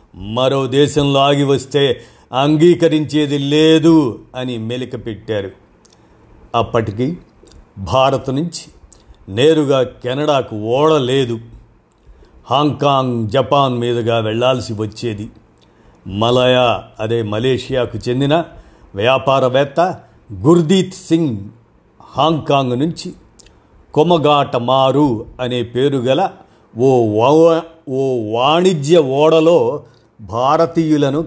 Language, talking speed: Telugu, 70 wpm